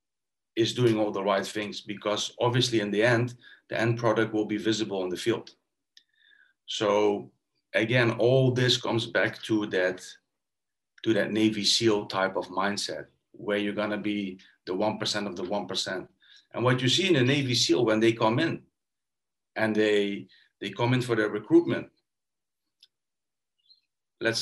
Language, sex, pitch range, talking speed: English, male, 105-125 Hz, 155 wpm